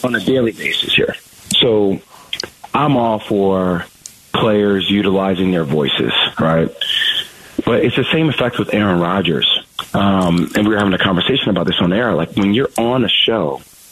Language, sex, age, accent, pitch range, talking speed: English, male, 30-49, American, 95-130 Hz, 170 wpm